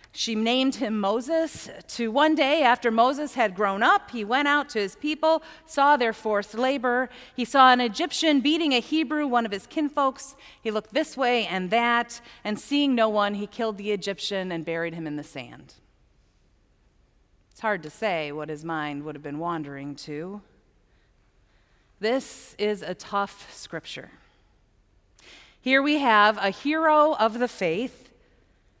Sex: female